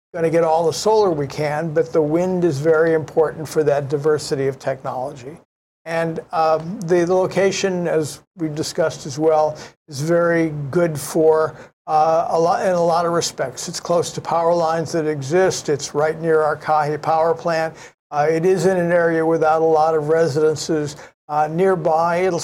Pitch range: 155-175 Hz